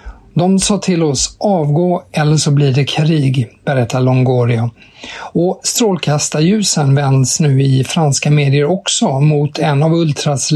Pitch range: 135-170 Hz